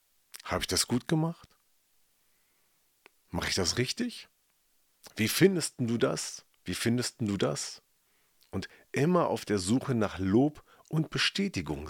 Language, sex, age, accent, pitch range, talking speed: German, male, 40-59, German, 95-145 Hz, 130 wpm